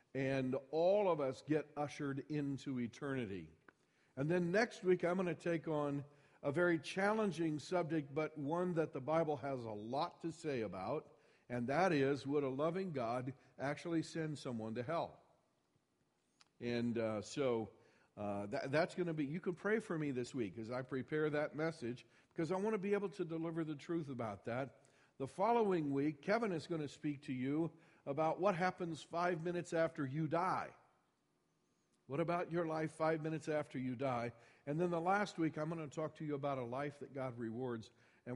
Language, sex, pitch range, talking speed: English, male, 120-165 Hz, 190 wpm